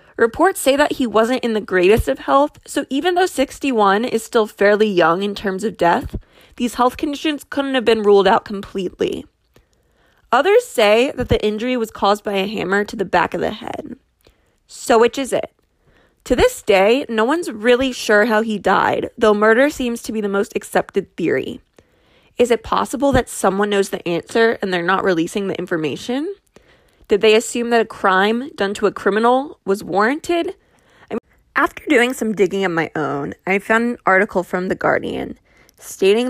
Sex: female